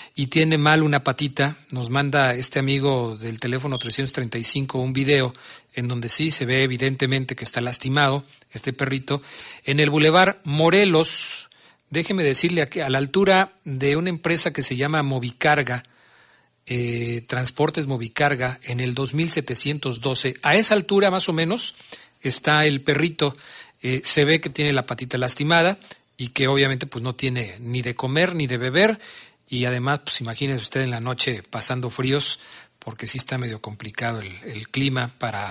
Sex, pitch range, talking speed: male, 125-150 Hz, 160 wpm